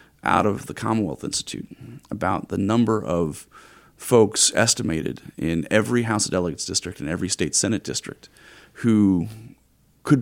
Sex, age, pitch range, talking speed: male, 30-49, 100-130 Hz, 140 wpm